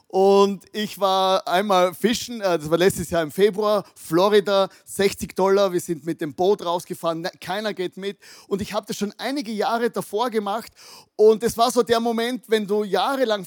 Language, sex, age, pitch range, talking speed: German, male, 30-49, 170-220 Hz, 185 wpm